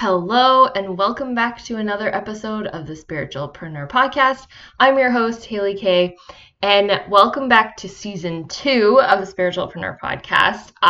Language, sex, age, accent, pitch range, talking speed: English, female, 10-29, American, 180-205 Hz, 145 wpm